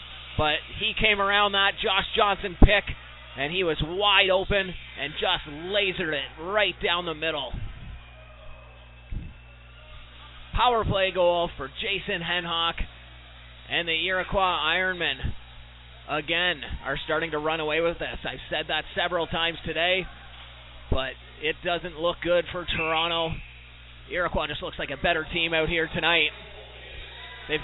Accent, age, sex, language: American, 30-49, male, English